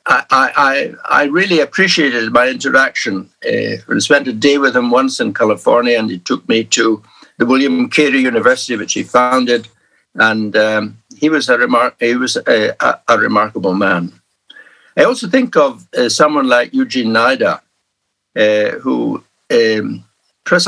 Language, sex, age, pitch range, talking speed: English, male, 60-79, 110-165 Hz, 155 wpm